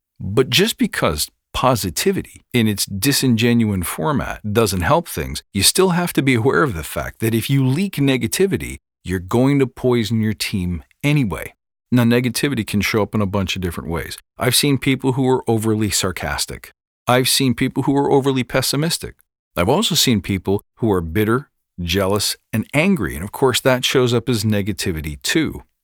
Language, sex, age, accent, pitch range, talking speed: English, male, 40-59, American, 100-135 Hz, 175 wpm